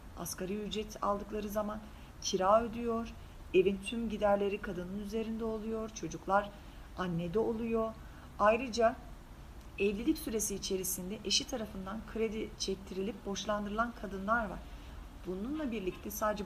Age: 40-59